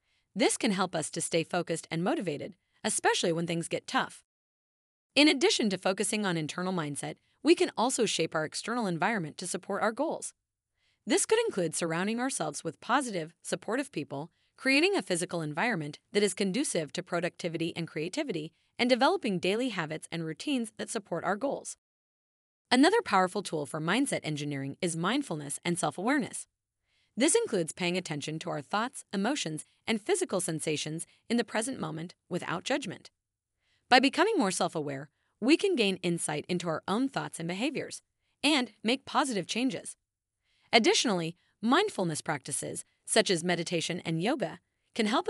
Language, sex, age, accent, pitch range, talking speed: English, female, 30-49, American, 165-245 Hz, 155 wpm